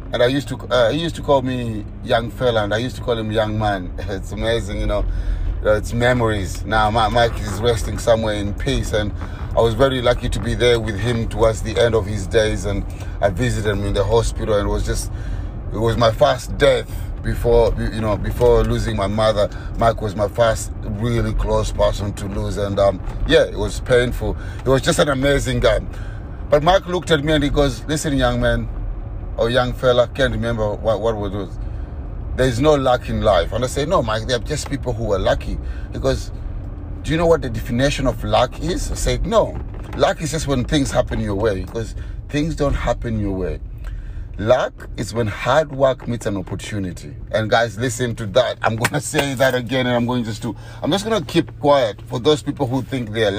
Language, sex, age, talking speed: English, male, 30-49, 215 wpm